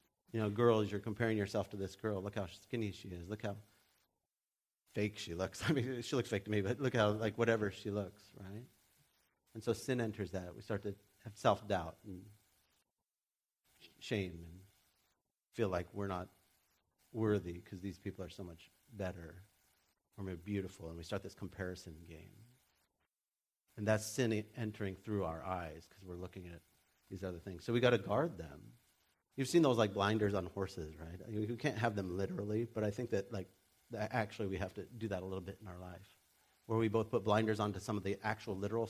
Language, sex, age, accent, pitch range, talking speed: English, male, 40-59, American, 90-110 Hz, 200 wpm